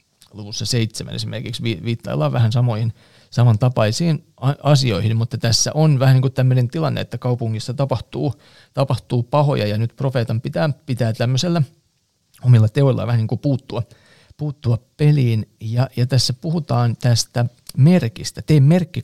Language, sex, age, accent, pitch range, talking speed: Finnish, male, 40-59, native, 115-140 Hz, 135 wpm